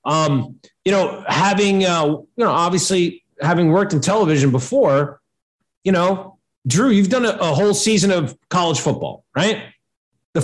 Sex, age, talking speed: male, 40-59, 155 wpm